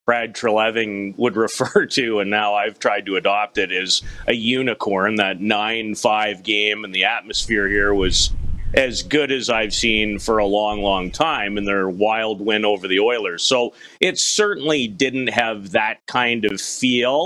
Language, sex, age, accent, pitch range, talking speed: English, male, 40-59, American, 105-135 Hz, 170 wpm